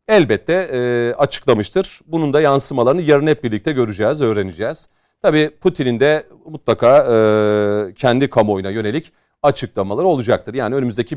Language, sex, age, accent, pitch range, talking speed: Turkish, male, 40-59, native, 110-165 Hz, 115 wpm